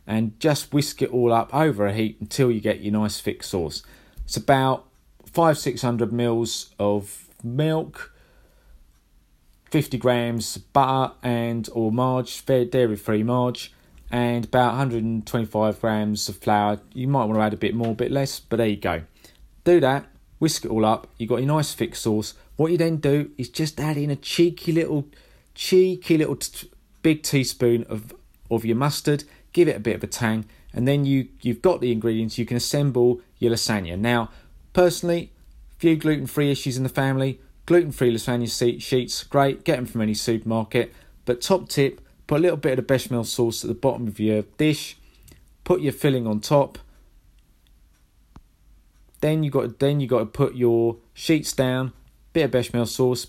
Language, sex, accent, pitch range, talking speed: English, male, British, 110-140 Hz, 175 wpm